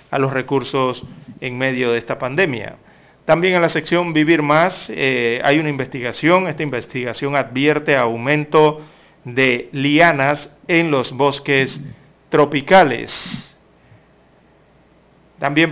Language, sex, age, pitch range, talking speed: Spanish, male, 40-59, 130-155 Hz, 110 wpm